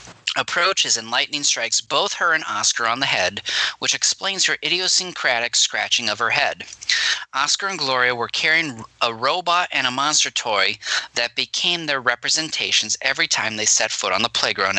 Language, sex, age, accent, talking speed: English, male, 20-39, American, 170 wpm